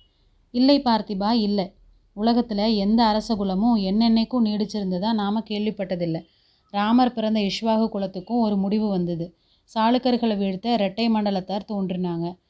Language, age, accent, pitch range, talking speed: Tamil, 30-49, native, 195-225 Hz, 105 wpm